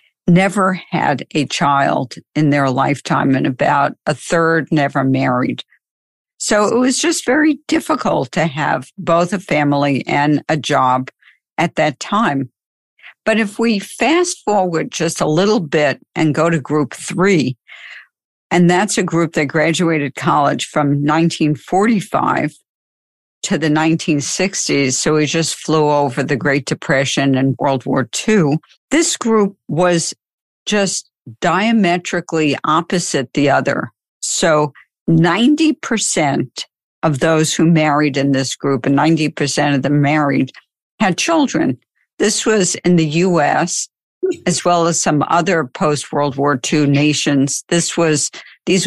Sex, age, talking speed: female, 60-79, 135 wpm